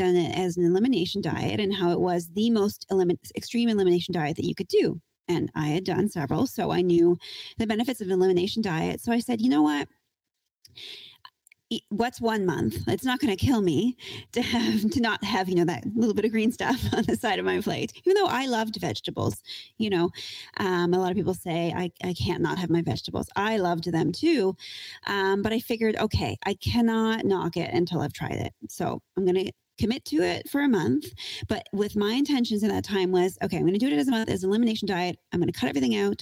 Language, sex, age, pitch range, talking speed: English, female, 30-49, 175-230 Hz, 235 wpm